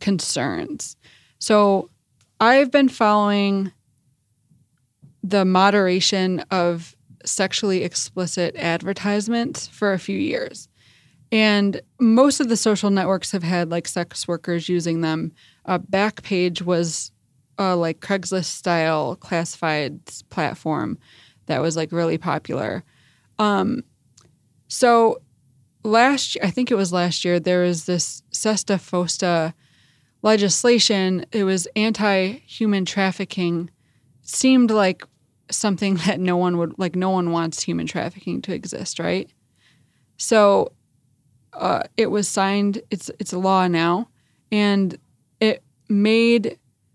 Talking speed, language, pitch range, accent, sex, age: 110 wpm, English, 160-205 Hz, American, female, 20-39